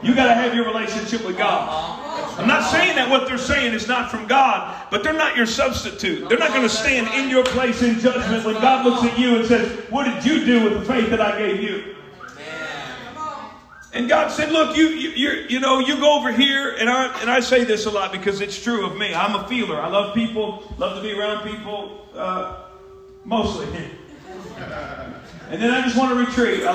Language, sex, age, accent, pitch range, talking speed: English, male, 40-59, American, 200-250 Hz, 220 wpm